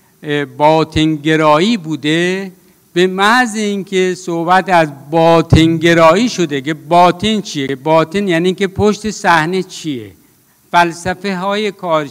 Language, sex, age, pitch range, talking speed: Persian, male, 60-79, 160-205 Hz, 105 wpm